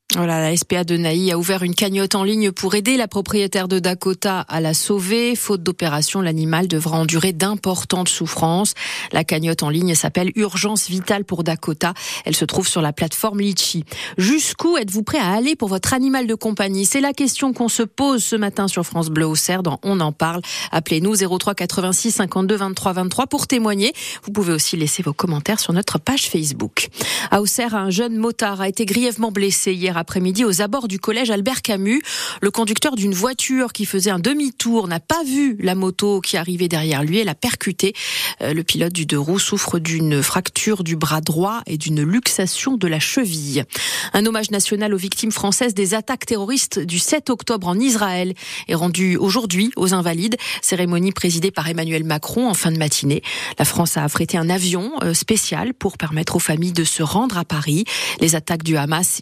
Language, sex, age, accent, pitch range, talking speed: French, female, 40-59, French, 170-215 Hz, 180 wpm